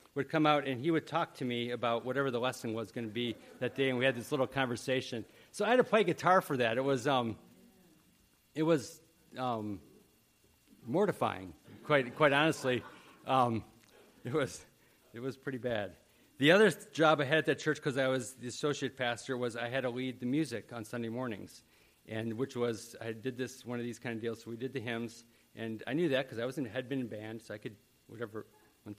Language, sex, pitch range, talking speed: English, male, 120-150 Hz, 220 wpm